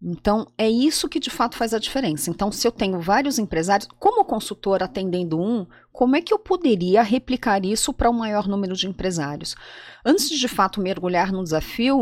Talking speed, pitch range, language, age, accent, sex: 195 wpm, 180-240 Hz, Portuguese, 40-59, Brazilian, female